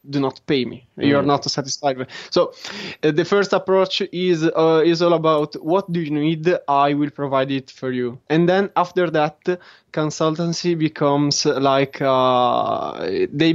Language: English